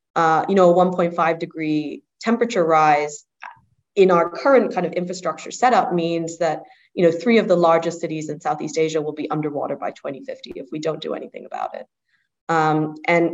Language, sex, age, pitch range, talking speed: English, female, 20-39, 165-190 Hz, 185 wpm